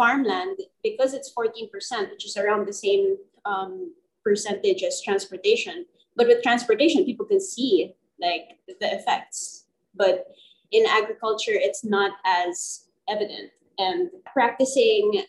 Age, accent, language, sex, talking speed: 20-39, Filipino, English, female, 120 wpm